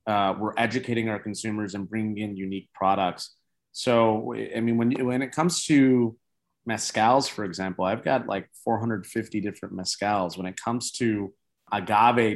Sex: male